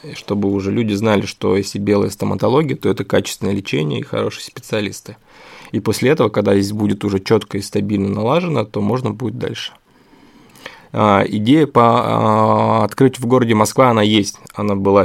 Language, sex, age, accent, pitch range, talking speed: Russian, male, 20-39, native, 100-115 Hz, 170 wpm